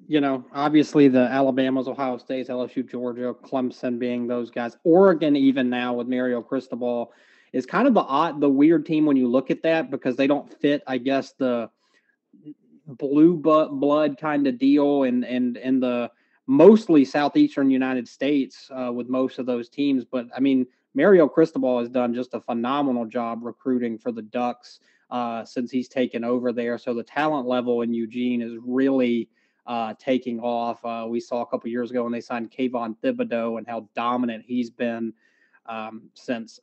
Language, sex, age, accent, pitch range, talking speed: English, male, 30-49, American, 120-140 Hz, 175 wpm